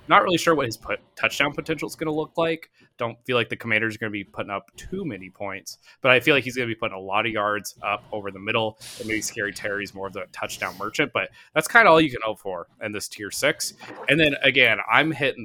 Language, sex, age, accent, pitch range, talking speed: English, male, 20-39, American, 100-125 Hz, 275 wpm